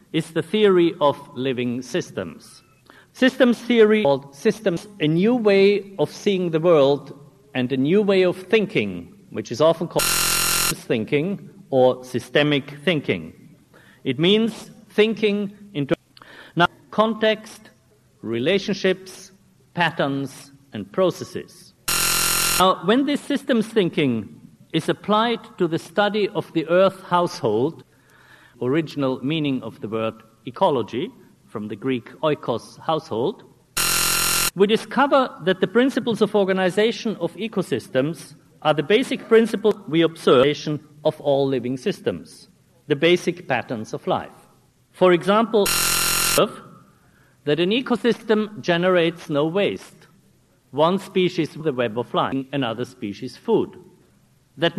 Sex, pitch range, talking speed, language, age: male, 145-205 Hz, 120 wpm, English, 50-69